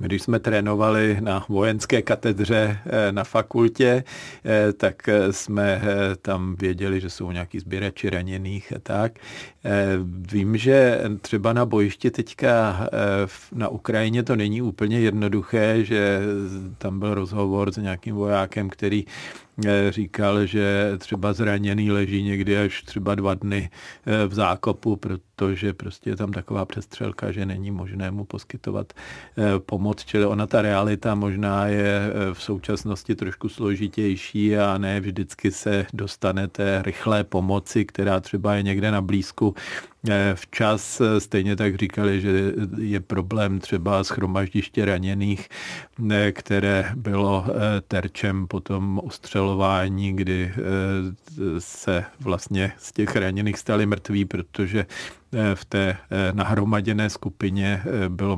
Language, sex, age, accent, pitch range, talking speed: Czech, male, 50-69, native, 95-105 Hz, 120 wpm